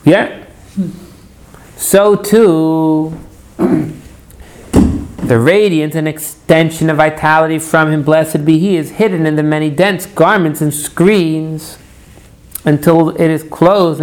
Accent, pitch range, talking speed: American, 145-180 Hz, 115 wpm